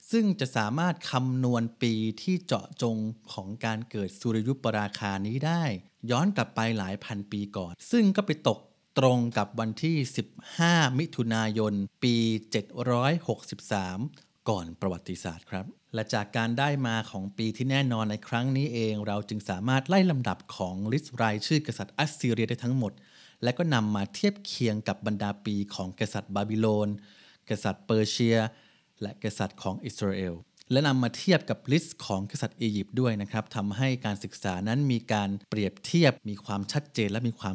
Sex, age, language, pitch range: male, 30-49, Thai, 105-135 Hz